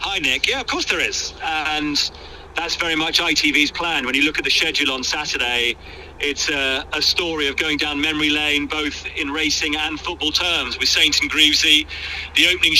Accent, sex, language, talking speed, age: British, male, English, 200 wpm, 30-49